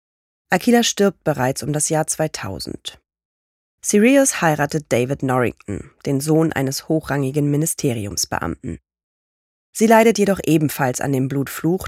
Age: 30-49